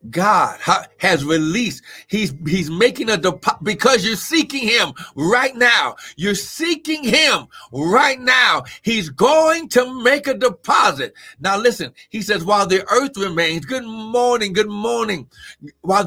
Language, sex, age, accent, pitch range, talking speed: English, male, 60-79, American, 135-195 Hz, 140 wpm